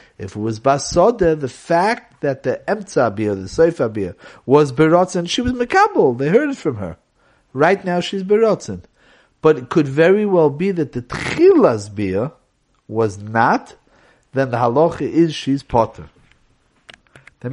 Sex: male